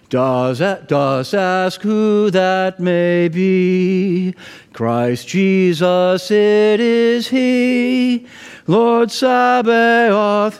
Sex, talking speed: male, 85 wpm